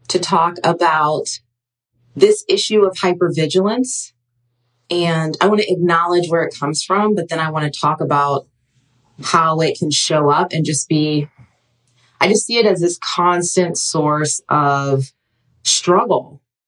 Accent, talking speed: American, 150 wpm